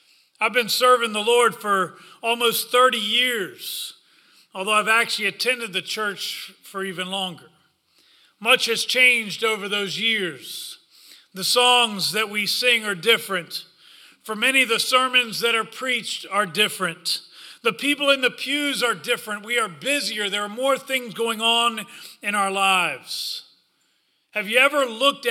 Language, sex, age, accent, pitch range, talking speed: English, male, 40-59, American, 175-235 Hz, 150 wpm